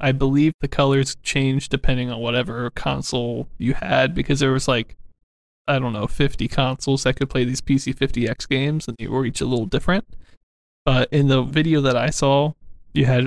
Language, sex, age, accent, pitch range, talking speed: English, male, 20-39, American, 125-145 Hz, 200 wpm